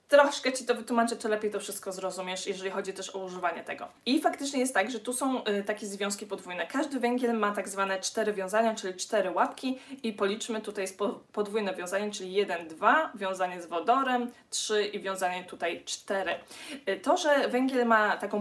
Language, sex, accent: Polish, female, native